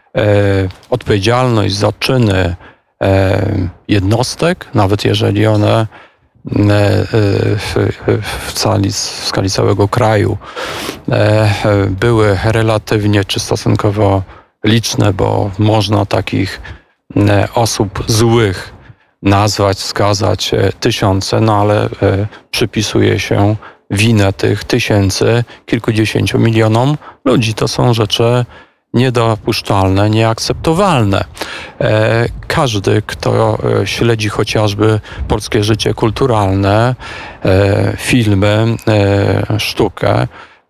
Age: 40-59